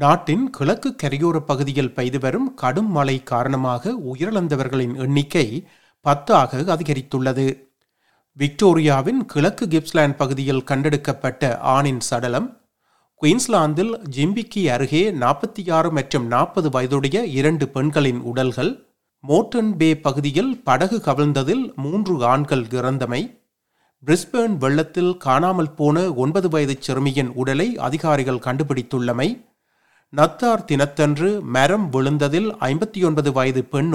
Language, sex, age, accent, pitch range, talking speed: Tamil, male, 30-49, native, 135-175 Hz, 95 wpm